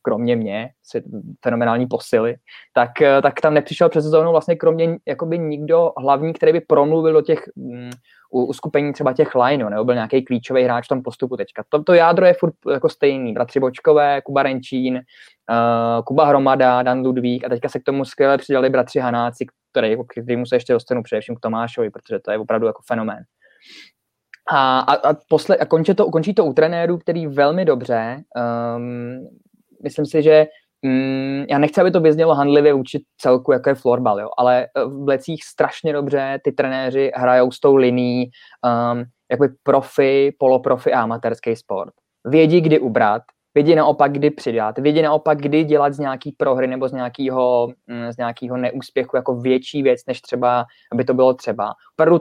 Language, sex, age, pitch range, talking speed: Czech, male, 20-39, 125-150 Hz, 175 wpm